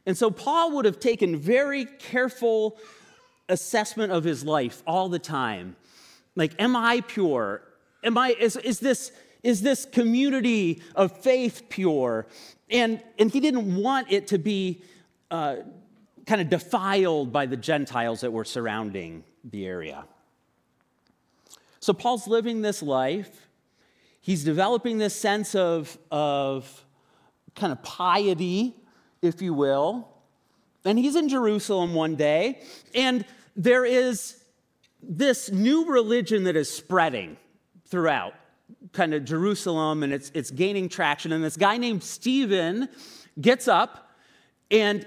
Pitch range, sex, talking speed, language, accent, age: 155-235 Hz, male, 130 wpm, English, American, 40-59